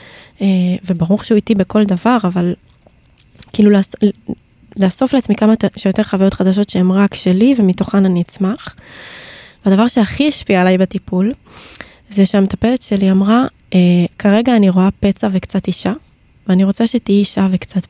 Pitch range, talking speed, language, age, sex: 185-220 Hz, 135 wpm, Hebrew, 20-39, female